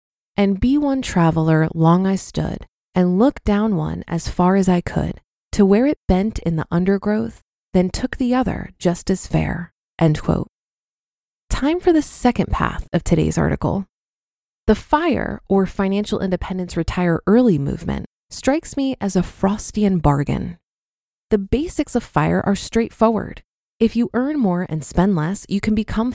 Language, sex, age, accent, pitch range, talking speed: English, female, 20-39, American, 180-230 Hz, 160 wpm